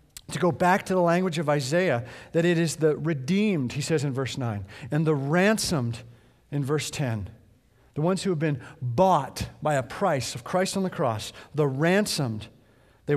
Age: 50-69